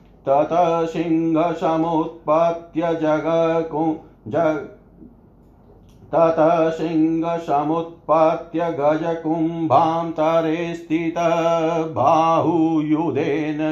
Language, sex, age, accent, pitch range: Hindi, male, 40-59, native, 155-165 Hz